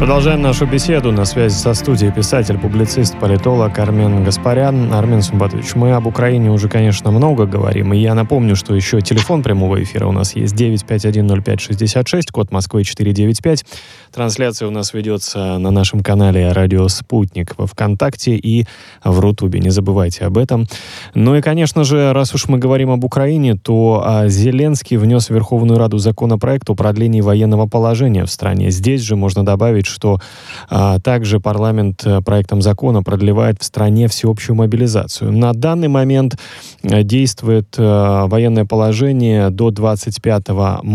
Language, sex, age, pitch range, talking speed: Russian, male, 20-39, 100-120 Hz, 145 wpm